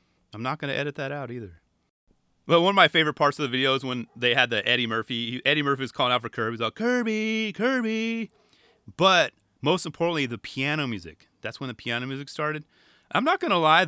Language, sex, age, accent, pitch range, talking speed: English, male, 30-49, American, 120-180 Hz, 230 wpm